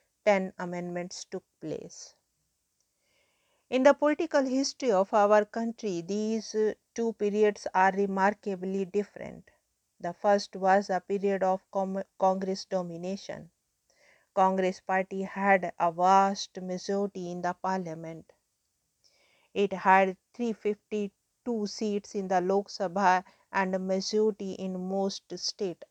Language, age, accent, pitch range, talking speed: English, 50-69, Indian, 190-215 Hz, 110 wpm